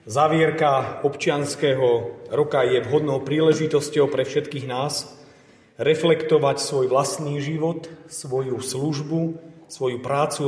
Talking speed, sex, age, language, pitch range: 95 wpm, male, 40-59, Slovak, 135-160 Hz